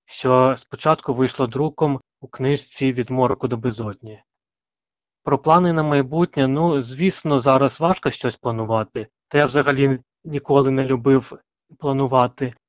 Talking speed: 130 wpm